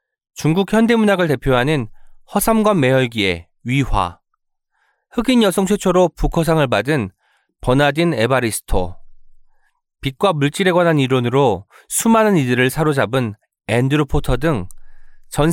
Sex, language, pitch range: male, Korean, 115-180 Hz